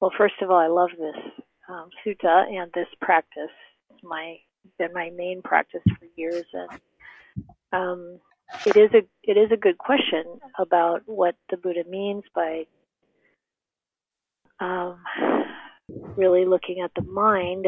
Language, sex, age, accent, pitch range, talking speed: English, female, 40-59, American, 175-205 Hz, 140 wpm